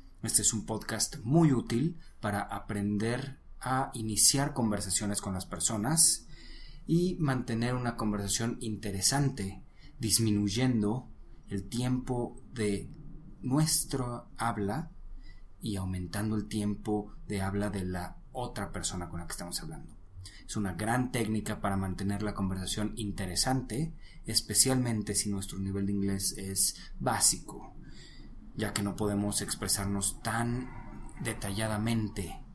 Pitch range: 100-120 Hz